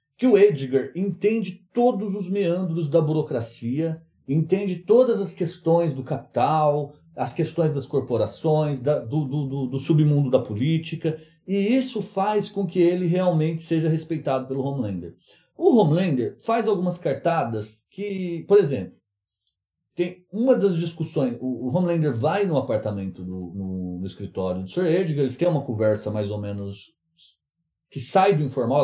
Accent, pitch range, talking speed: Brazilian, 135-190 Hz, 145 wpm